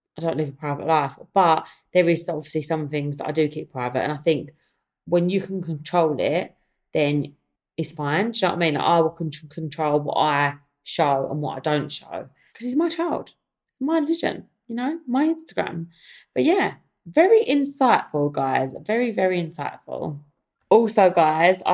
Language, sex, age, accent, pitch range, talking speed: English, female, 20-39, British, 150-190 Hz, 180 wpm